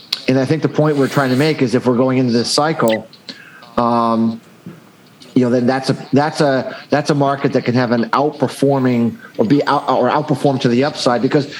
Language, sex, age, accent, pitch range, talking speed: English, male, 40-59, American, 130-150 Hz, 210 wpm